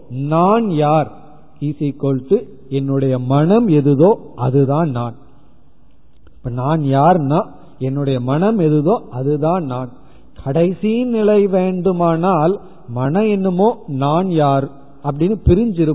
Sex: male